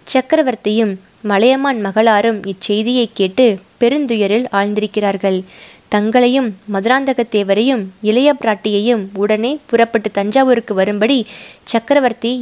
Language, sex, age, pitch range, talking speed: Tamil, female, 20-39, 205-250 Hz, 75 wpm